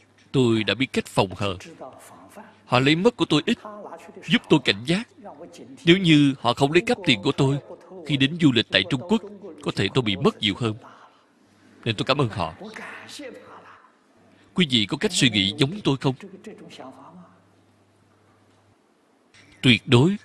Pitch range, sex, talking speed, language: 105-165 Hz, male, 165 wpm, Vietnamese